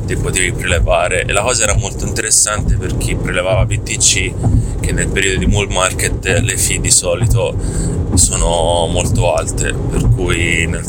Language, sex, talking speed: Italian, male, 155 wpm